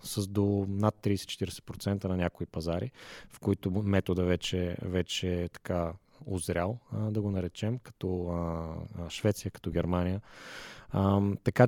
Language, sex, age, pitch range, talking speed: Bulgarian, male, 30-49, 90-110 Hz, 115 wpm